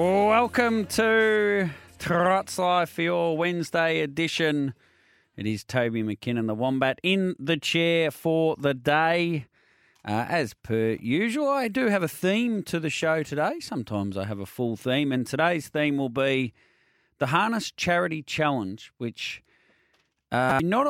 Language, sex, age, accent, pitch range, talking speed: English, male, 30-49, Australian, 115-160 Hz, 150 wpm